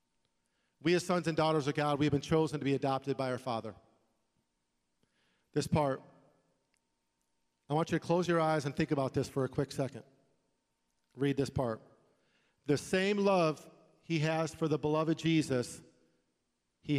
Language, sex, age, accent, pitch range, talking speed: English, male, 40-59, American, 110-165 Hz, 165 wpm